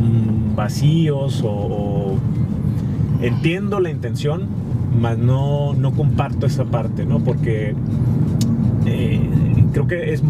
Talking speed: 100 wpm